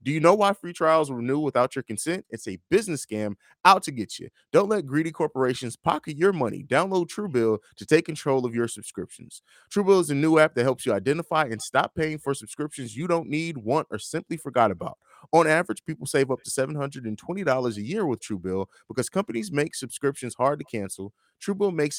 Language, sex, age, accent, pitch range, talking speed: English, male, 30-49, American, 120-165 Hz, 205 wpm